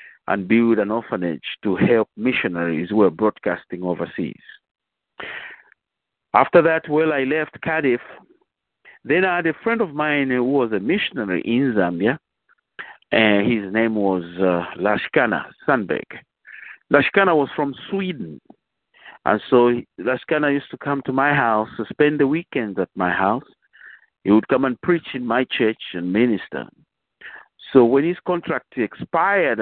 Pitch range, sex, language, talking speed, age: 110-150 Hz, male, English, 145 wpm, 50-69